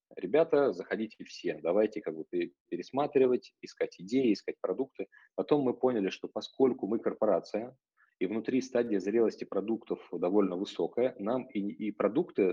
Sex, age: male, 30-49